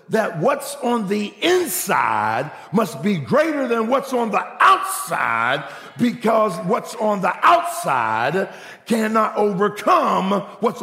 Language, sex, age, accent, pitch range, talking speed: English, male, 50-69, American, 140-225 Hz, 115 wpm